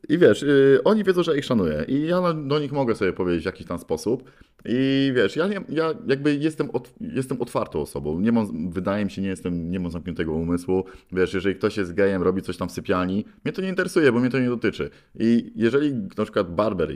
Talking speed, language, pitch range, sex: 210 wpm, Polish, 90-125 Hz, male